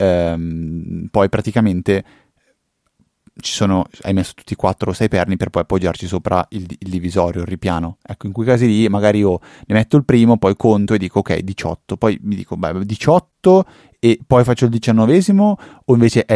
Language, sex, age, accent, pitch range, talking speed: Italian, male, 30-49, native, 90-110 Hz, 190 wpm